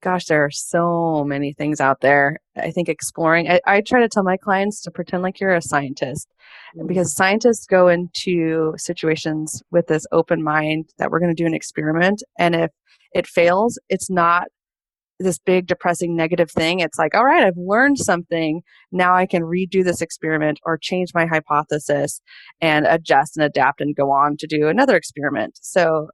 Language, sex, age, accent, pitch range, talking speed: English, female, 20-39, American, 155-180 Hz, 185 wpm